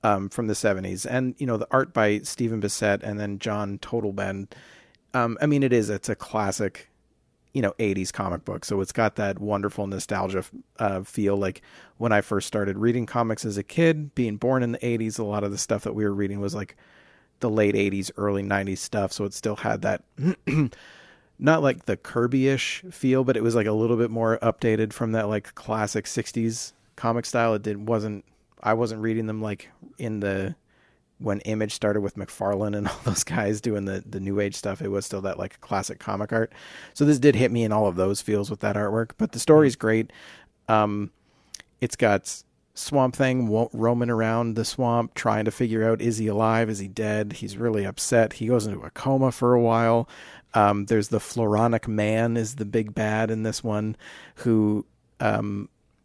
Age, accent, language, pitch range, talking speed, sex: 40-59, American, English, 100-115 Hz, 200 wpm, male